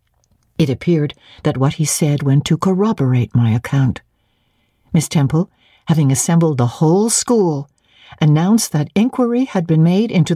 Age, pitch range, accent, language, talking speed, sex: 60-79, 150-205 Hz, American, English, 145 wpm, female